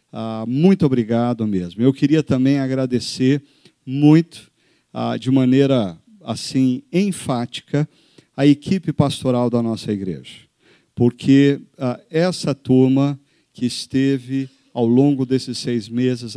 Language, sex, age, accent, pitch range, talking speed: Portuguese, male, 50-69, Brazilian, 120-140 Hz, 115 wpm